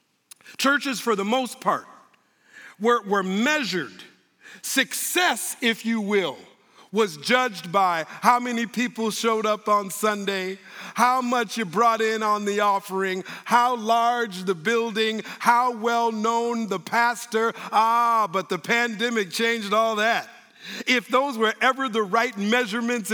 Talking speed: 135 wpm